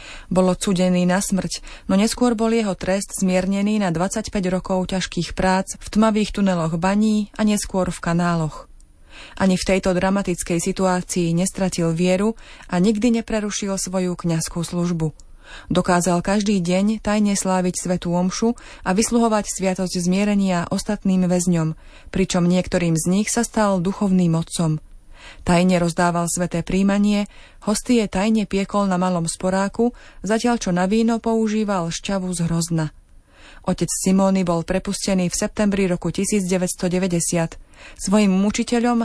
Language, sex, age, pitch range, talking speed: Slovak, female, 20-39, 175-205 Hz, 130 wpm